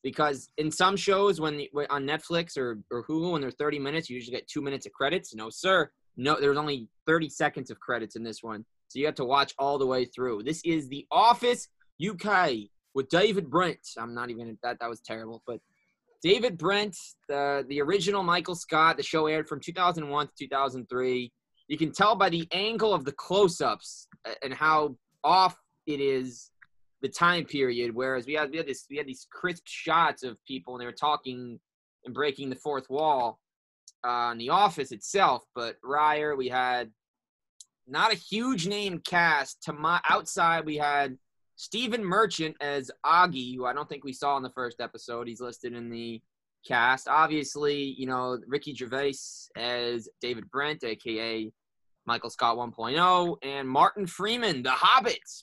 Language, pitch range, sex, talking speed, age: English, 125-170 Hz, male, 180 wpm, 20-39